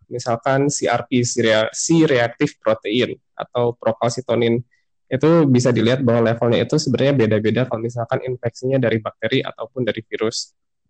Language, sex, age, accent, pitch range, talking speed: Indonesian, male, 20-39, native, 115-135 Hz, 120 wpm